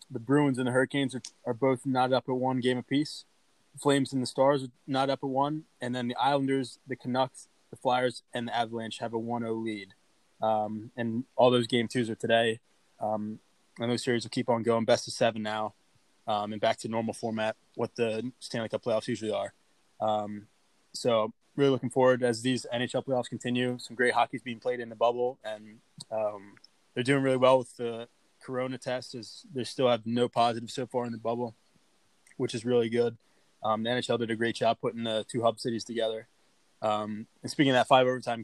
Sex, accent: male, American